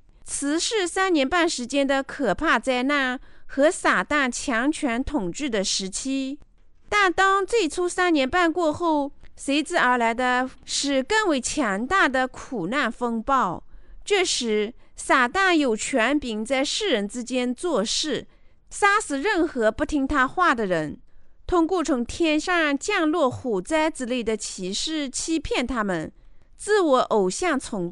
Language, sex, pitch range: Chinese, female, 240-330 Hz